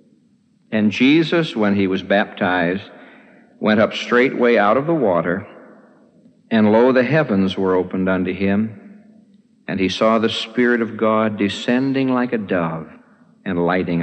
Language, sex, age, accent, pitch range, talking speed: English, male, 60-79, American, 100-150 Hz, 145 wpm